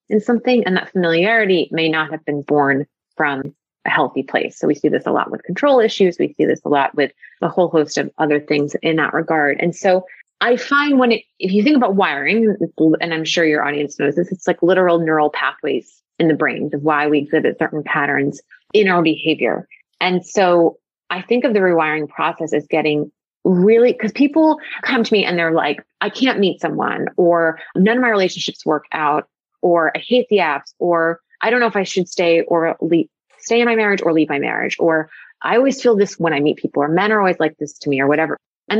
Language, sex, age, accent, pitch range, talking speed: English, female, 30-49, American, 160-215 Hz, 225 wpm